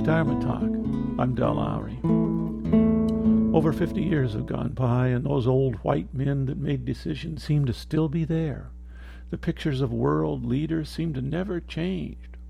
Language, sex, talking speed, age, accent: English, male, 160 wpm, 50-69, American